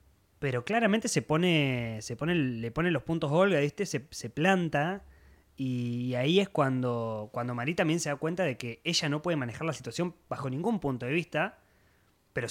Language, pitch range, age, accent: Spanish, 115-165 Hz, 20-39, Argentinian